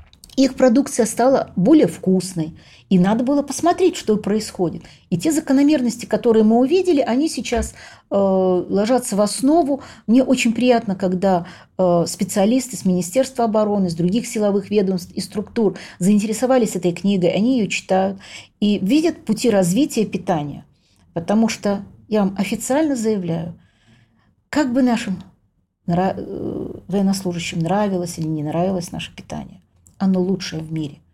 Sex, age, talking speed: female, 40-59, 130 wpm